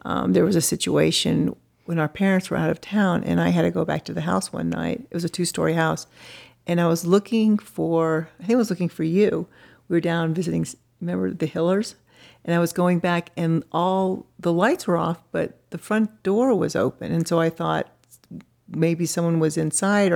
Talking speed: 210 wpm